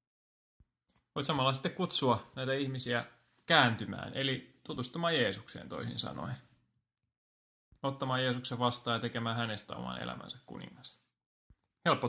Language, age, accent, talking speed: Finnish, 20-39, native, 110 wpm